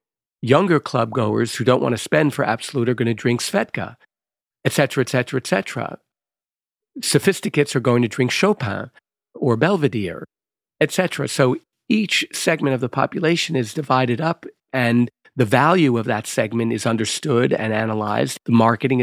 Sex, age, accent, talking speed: male, 50-69, American, 165 wpm